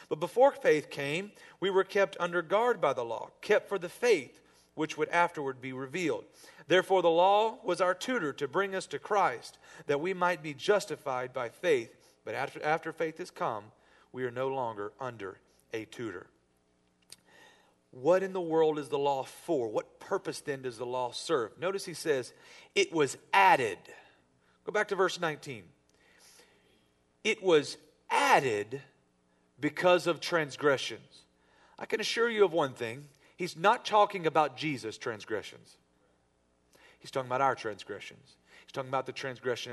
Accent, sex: American, male